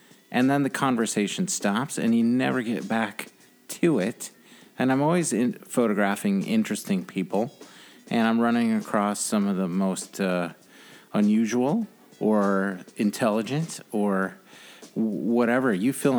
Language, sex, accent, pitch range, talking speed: English, male, American, 110-165 Hz, 130 wpm